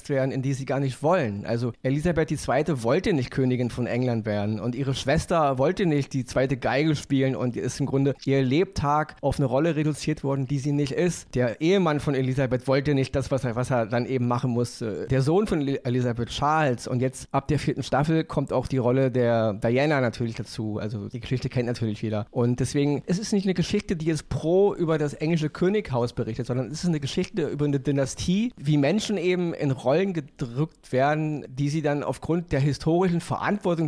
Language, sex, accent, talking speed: German, male, German, 210 wpm